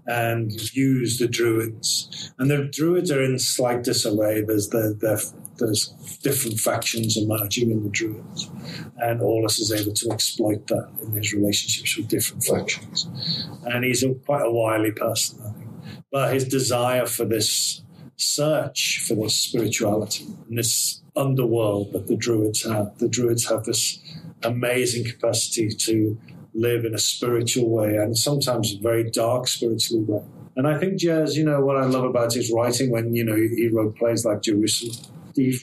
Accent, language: British, English